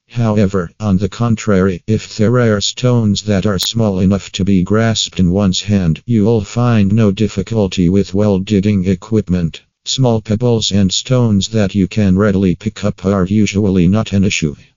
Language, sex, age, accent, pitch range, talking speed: English, male, 50-69, American, 95-110 Hz, 165 wpm